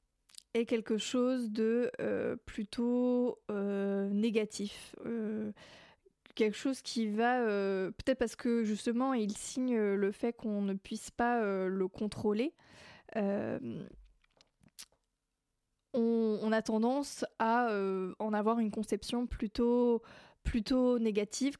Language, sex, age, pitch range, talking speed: French, female, 20-39, 210-240 Hz, 120 wpm